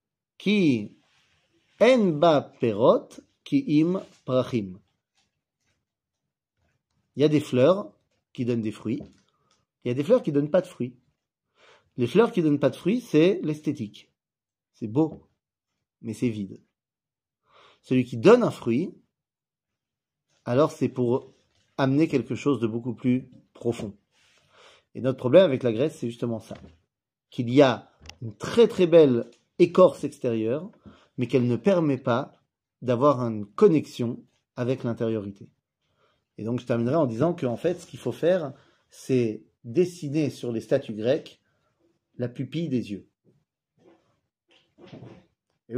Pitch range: 115-150 Hz